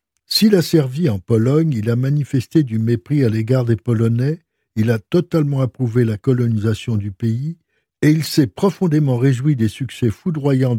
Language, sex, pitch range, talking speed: French, male, 115-150 Hz, 165 wpm